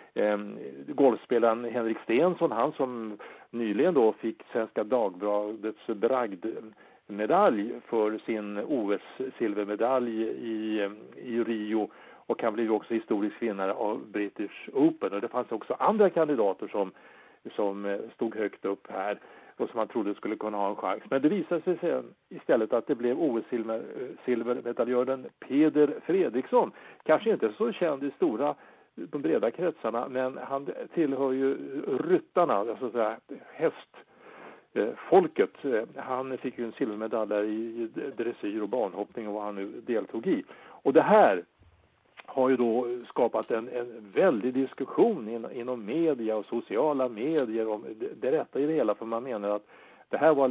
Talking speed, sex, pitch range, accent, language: 145 wpm, male, 110-135 Hz, Norwegian, English